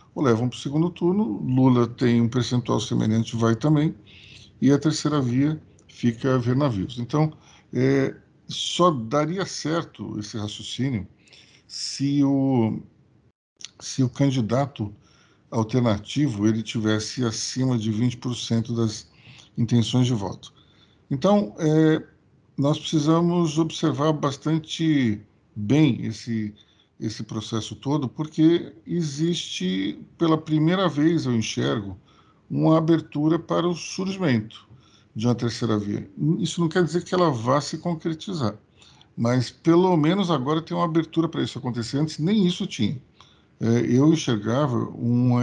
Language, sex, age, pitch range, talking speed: Portuguese, male, 50-69, 115-160 Hz, 120 wpm